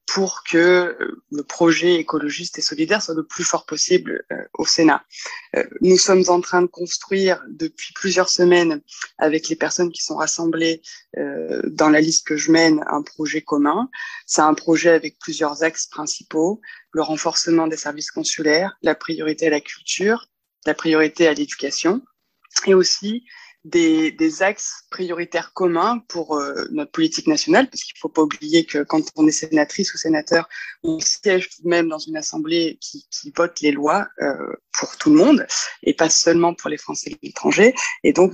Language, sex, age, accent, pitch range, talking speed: French, female, 20-39, French, 155-195 Hz, 175 wpm